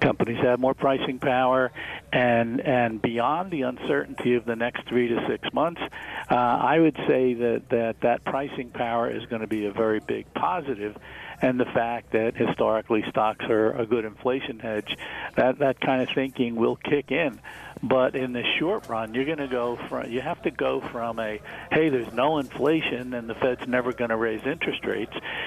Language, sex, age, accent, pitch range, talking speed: English, male, 50-69, American, 115-135 Hz, 195 wpm